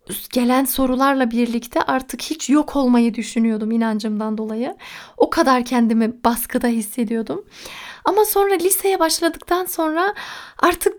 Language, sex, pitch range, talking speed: Turkish, female, 230-285 Hz, 115 wpm